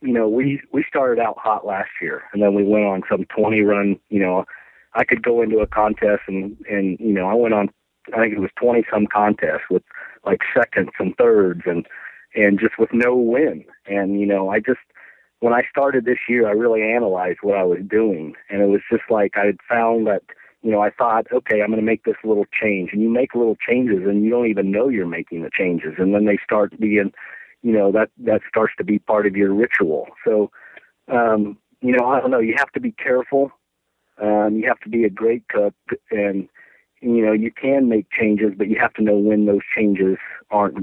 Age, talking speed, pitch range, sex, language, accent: 40-59, 225 wpm, 100-115 Hz, male, English, American